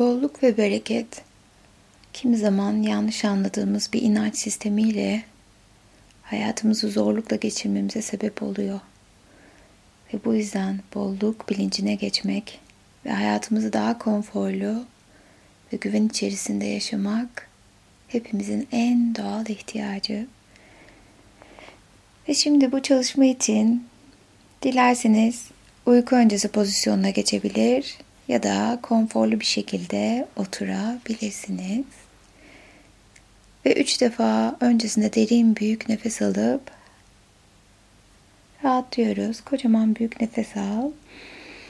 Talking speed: 90 wpm